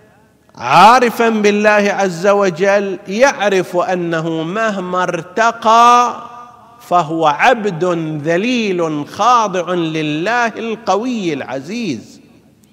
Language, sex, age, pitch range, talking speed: Arabic, male, 50-69, 110-175 Hz, 70 wpm